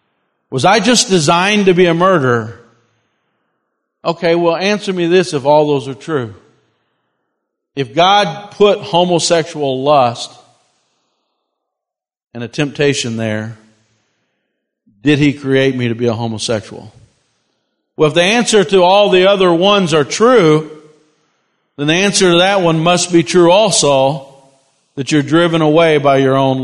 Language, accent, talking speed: English, American, 140 wpm